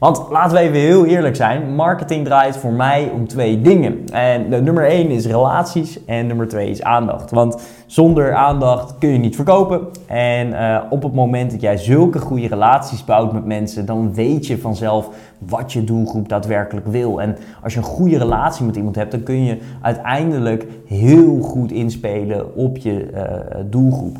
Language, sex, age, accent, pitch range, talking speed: Dutch, male, 20-39, Dutch, 110-140 Hz, 180 wpm